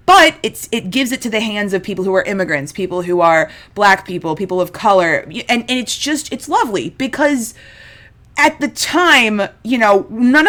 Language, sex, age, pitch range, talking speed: English, female, 20-39, 195-295 Hz, 195 wpm